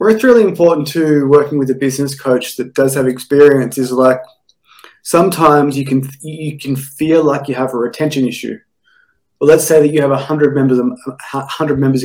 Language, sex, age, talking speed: English, male, 20-39, 185 wpm